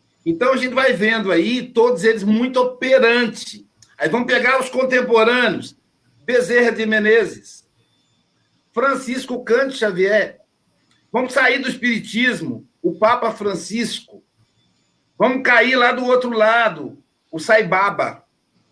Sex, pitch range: male, 195-250 Hz